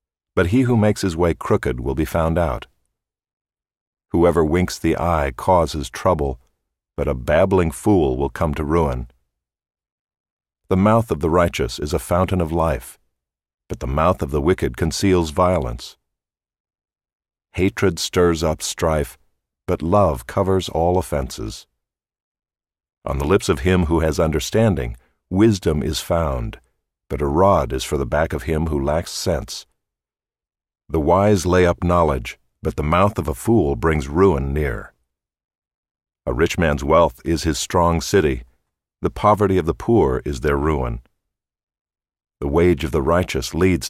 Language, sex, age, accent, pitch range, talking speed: English, male, 50-69, American, 70-90 Hz, 150 wpm